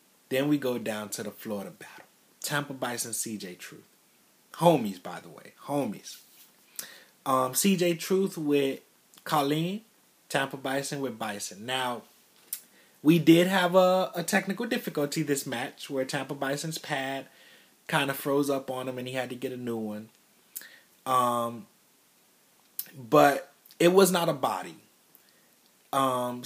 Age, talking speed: 30-49, 140 wpm